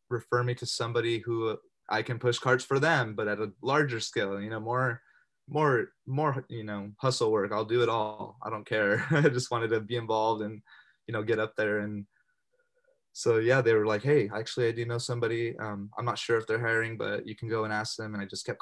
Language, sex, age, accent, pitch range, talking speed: English, male, 20-39, American, 105-125 Hz, 240 wpm